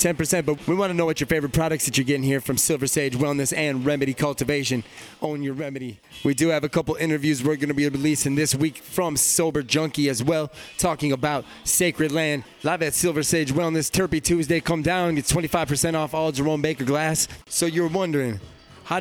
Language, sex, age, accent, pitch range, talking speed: English, male, 30-49, American, 140-165 Hz, 210 wpm